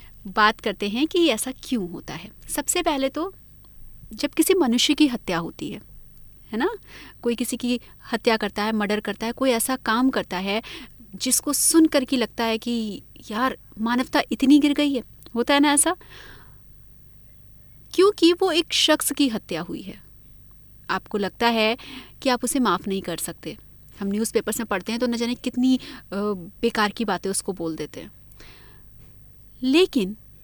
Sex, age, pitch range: female, 30-49, 195-285 Hz